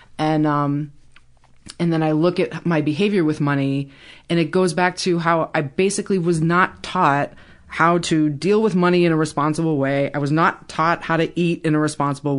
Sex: female